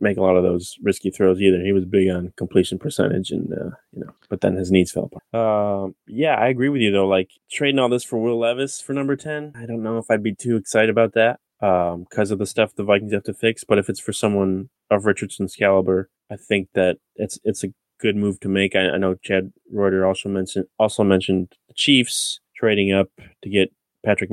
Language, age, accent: English, 20-39, American